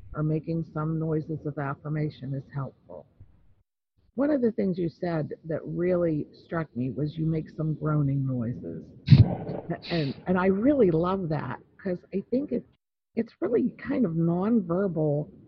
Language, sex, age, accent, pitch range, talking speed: English, female, 50-69, American, 150-195 Hz, 150 wpm